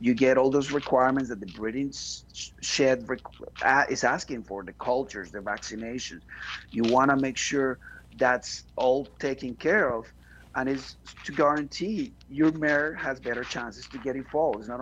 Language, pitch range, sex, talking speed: English, 120-140 Hz, male, 160 wpm